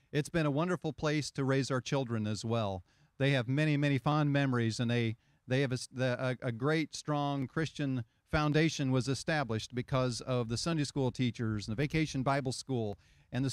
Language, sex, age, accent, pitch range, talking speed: English, male, 40-59, American, 115-145 Hz, 195 wpm